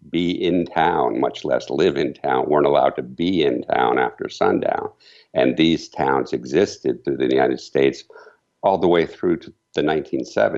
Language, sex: English, male